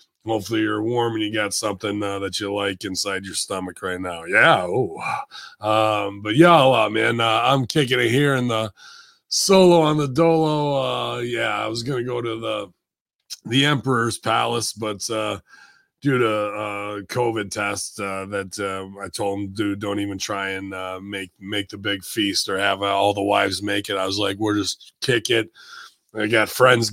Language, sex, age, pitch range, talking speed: English, male, 30-49, 100-120 Hz, 195 wpm